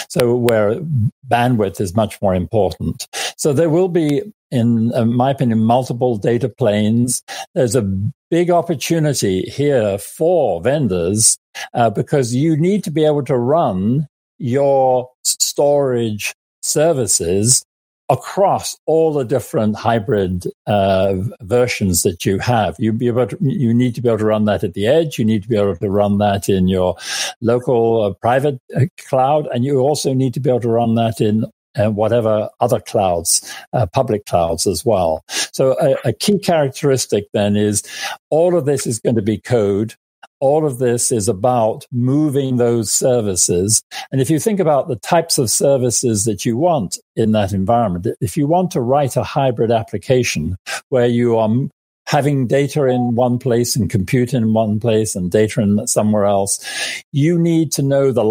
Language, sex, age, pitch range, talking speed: English, male, 50-69, 105-140 Hz, 165 wpm